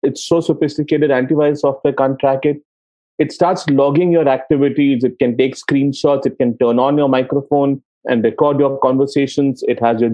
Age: 40-59